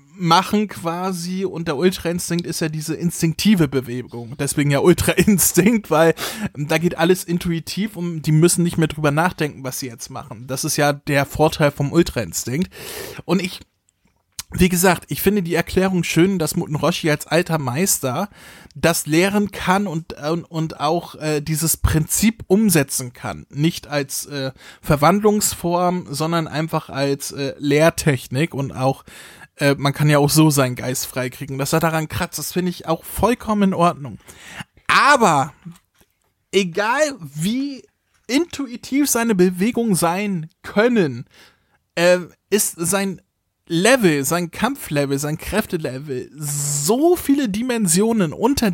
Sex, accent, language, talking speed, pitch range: male, German, German, 135 wpm, 145-190 Hz